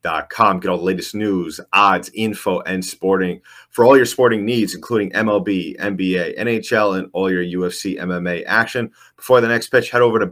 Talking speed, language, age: 185 wpm, English, 30-49